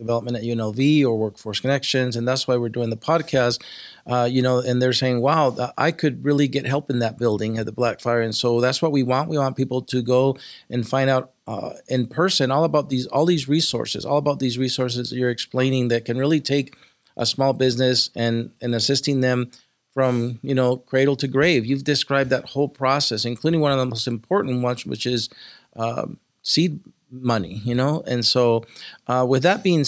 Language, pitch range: English, 120-140 Hz